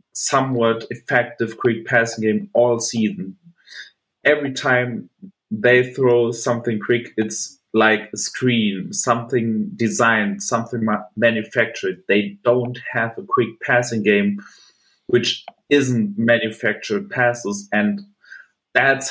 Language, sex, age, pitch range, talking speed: English, male, 30-49, 105-125 Hz, 105 wpm